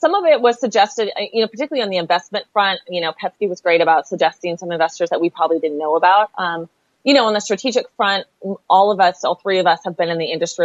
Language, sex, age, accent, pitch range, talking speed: English, female, 30-49, American, 170-200 Hz, 260 wpm